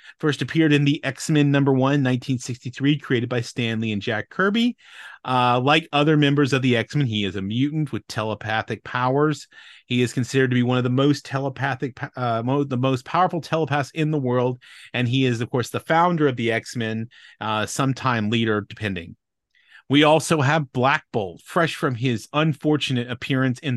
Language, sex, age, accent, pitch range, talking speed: English, male, 30-49, American, 115-150 Hz, 175 wpm